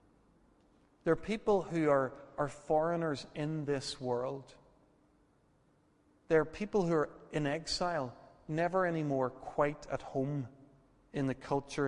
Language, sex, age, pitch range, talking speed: English, male, 40-59, 125-150 Hz, 125 wpm